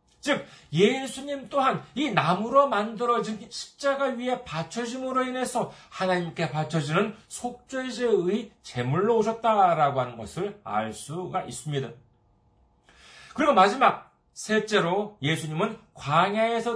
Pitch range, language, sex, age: 165-250 Hz, Korean, male, 40-59